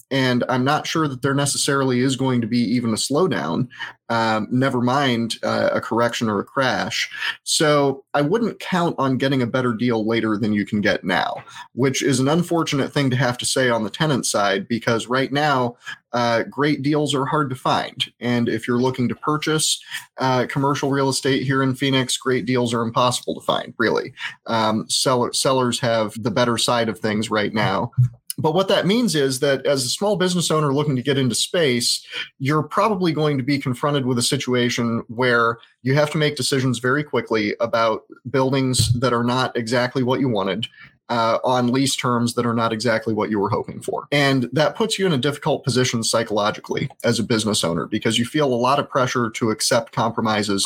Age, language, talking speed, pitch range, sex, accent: 30-49, English, 200 wpm, 115-140 Hz, male, American